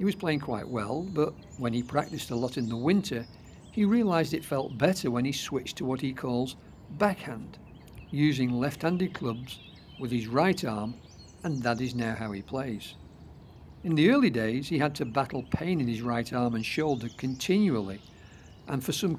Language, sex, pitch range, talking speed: English, male, 120-155 Hz, 190 wpm